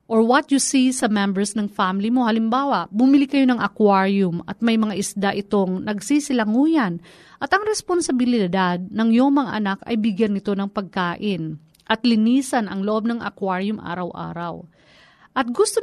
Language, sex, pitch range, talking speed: Filipino, female, 200-270 Hz, 155 wpm